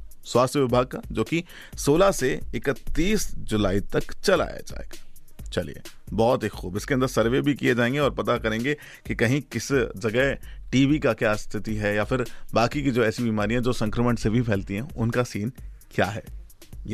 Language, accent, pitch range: Hindi, native, 110-140 Hz